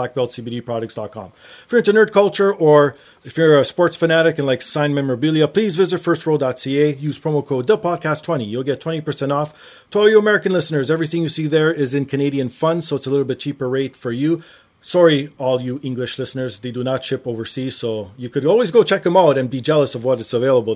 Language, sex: English, male